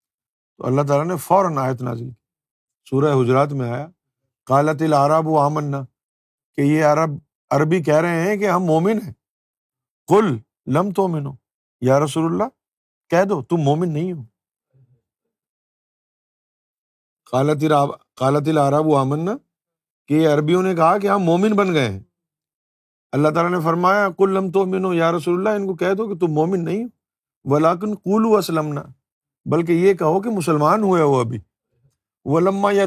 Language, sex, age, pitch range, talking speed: Urdu, male, 50-69, 140-190 Hz, 125 wpm